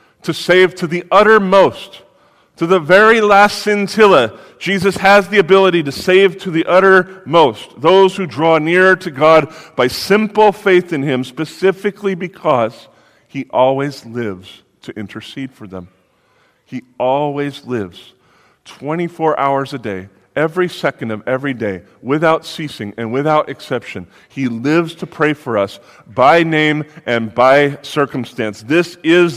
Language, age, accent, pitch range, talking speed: English, 40-59, American, 130-175 Hz, 140 wpm